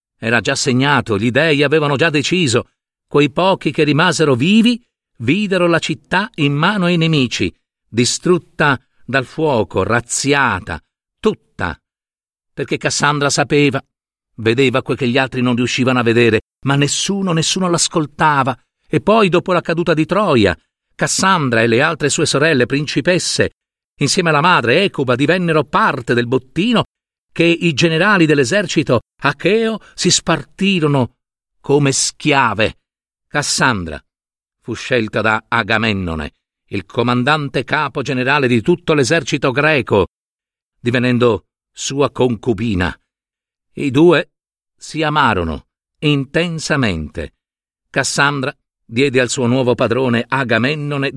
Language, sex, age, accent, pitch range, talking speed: Italian, male, 50-69, native, 125-160 Hz, 115 wpm